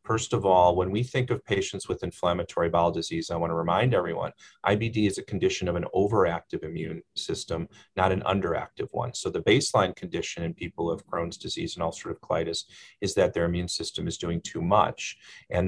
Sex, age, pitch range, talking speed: male, 40-59, 90-110 Hz, 205 wpm